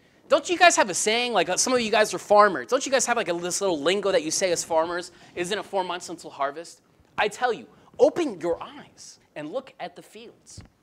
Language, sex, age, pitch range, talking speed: English, male, 20-39, 150-230 Hz, 245 wpm